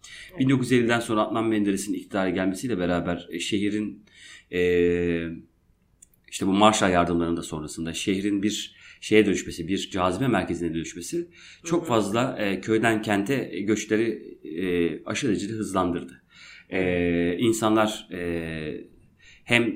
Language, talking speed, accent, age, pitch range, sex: Turkish, 100 wpm, native, 30-49, 90-110 Hz, male